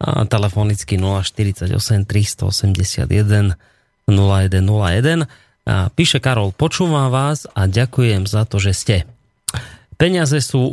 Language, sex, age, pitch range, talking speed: Slovak, male, 30-49, 100-125 Hz, 100 wpm